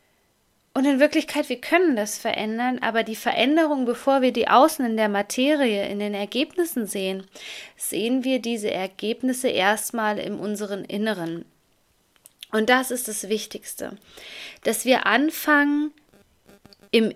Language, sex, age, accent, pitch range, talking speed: German, female, 20-39, German, 200-255 Hz, 135 wpm